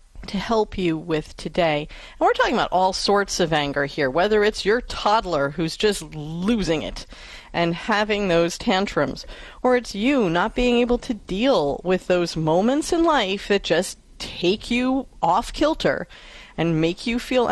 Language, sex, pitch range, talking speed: English, female, 165-235 Hz, 170 wpm